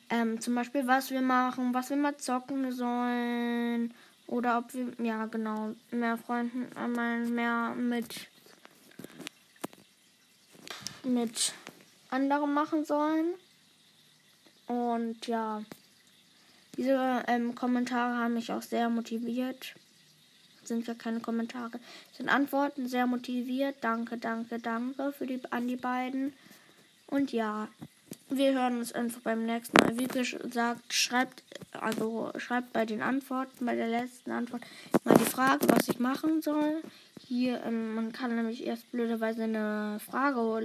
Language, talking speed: German, 130 wpm